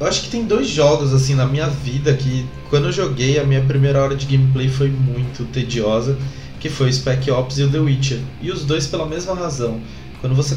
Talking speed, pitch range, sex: 220 wpm, 125-145 Hz, male